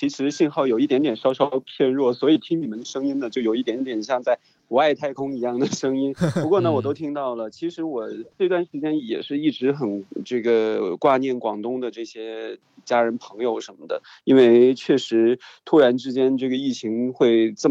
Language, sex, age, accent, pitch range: Chinese, male, 20-39, native, 115-135 Hz